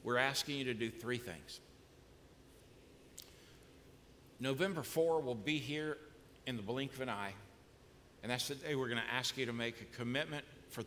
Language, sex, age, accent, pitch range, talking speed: English, male, 60-79, American, 115-145 Hz, 170 wpm